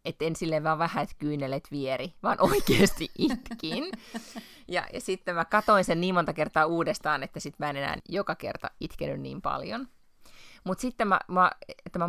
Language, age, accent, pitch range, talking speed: Finnish, 30-49, native, 140-175 Hz, 170 wpm